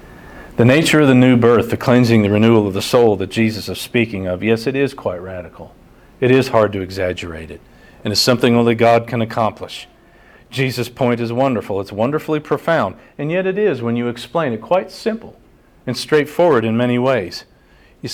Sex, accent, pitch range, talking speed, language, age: male, American, 125-180 Hz, 195 wpm, English, 50-69